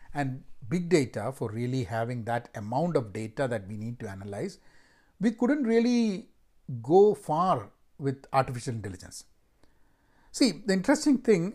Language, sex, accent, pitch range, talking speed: English, male, Indian, 125-180 Hz, 140 wpm